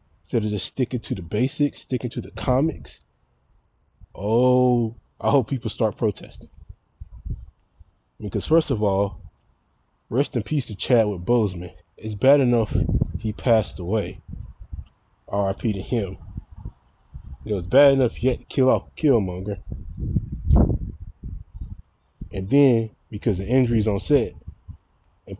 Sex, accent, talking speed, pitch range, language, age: male, American, 130 wpm, 95-125 Hz, English, 20-39